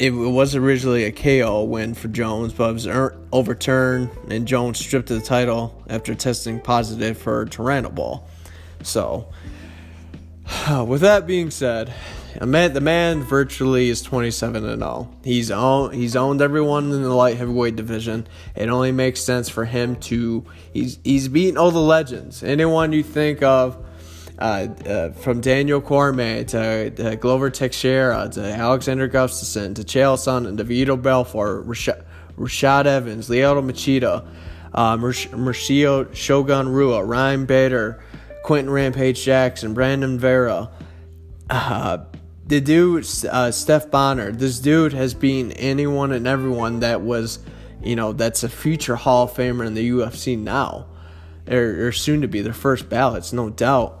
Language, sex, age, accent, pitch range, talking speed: English, male, 20-39, American, 110-135 Hz, 150 wpm